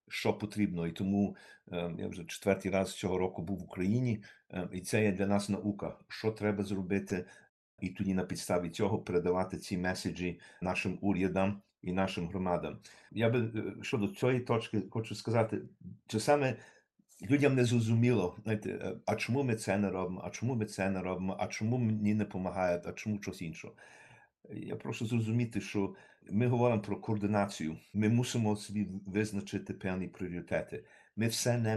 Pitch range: 95-110 Hz